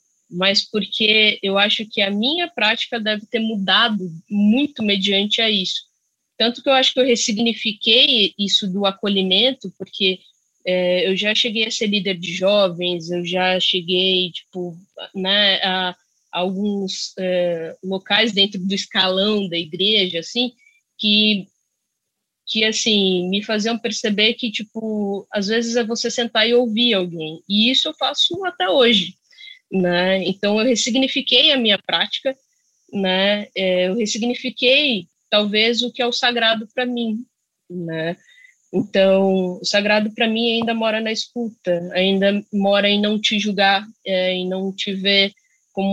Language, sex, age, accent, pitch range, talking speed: Portuguese, female, 20-39, Brazilian, 190-230 Hz, 150 wpm